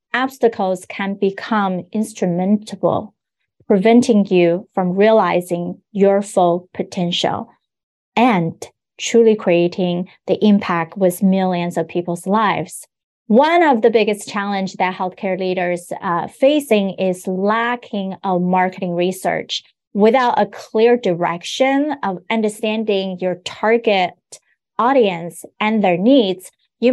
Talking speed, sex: 110 wpm, female